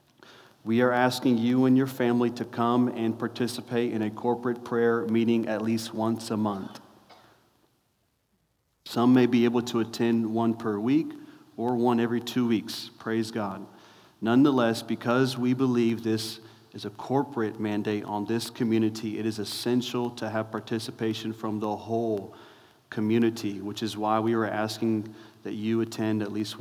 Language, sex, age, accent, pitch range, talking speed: English, male, 40-59, American, 110-120 Hz, 160 wpm